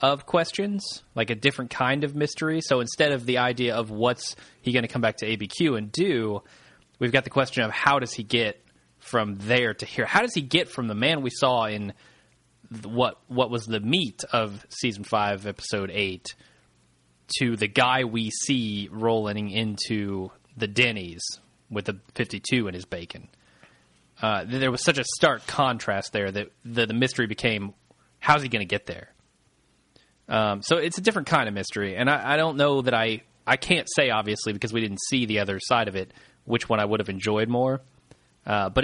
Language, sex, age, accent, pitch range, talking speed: English, male, 20-39, American, 105-140 Hz, 200 wpm